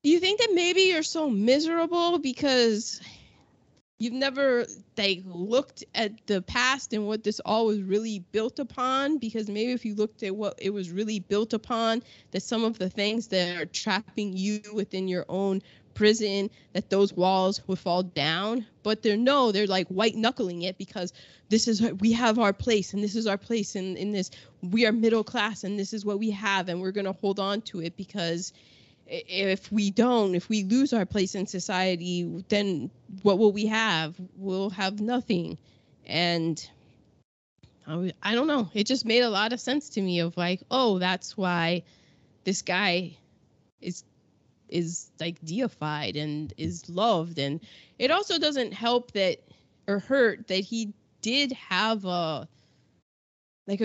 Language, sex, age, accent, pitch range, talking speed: English, female, 20-39, American, 185-225 Hz, 175 wpm